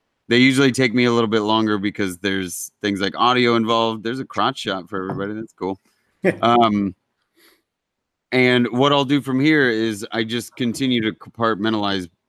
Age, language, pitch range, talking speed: 30-49, English, 100-115 Hz, 170 wpm